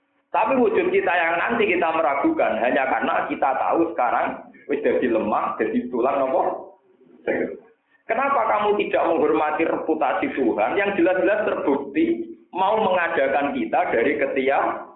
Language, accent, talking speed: Indonesian, native, 120 wpm